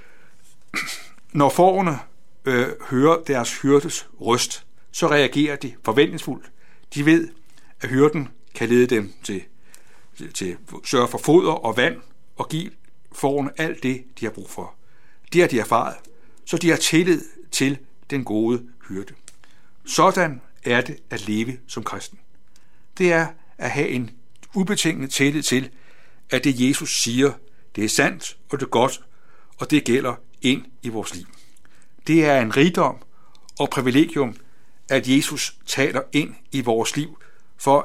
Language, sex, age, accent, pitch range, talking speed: Danish, male, 60-79, native, 125-160 Hz, 150 wpm